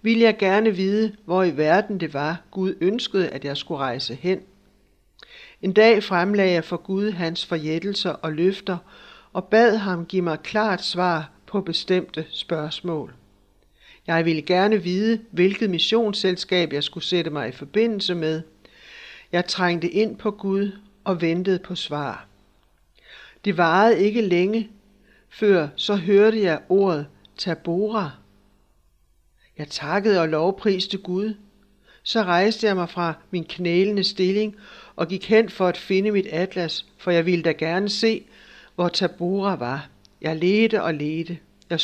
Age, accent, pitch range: 60-79, native, 165-205 Hz